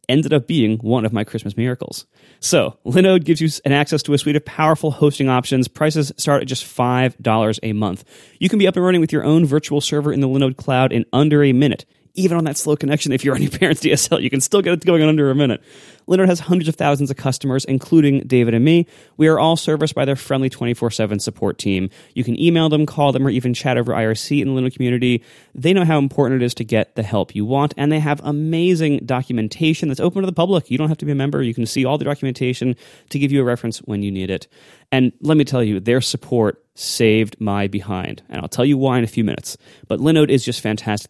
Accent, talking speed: American, 250 wpm